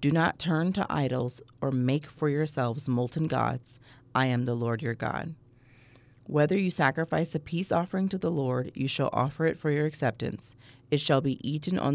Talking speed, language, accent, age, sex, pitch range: 190 wpm, English, American, 30-49, female, 125-145 Hz